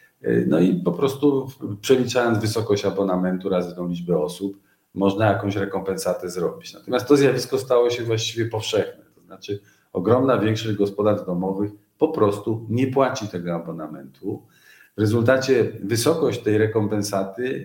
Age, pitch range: 40-59, 100-125 Hz